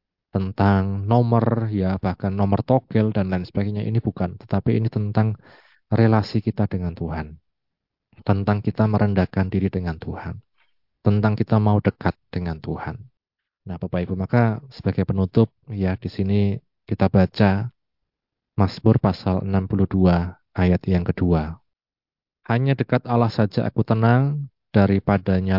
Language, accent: Indonesian, native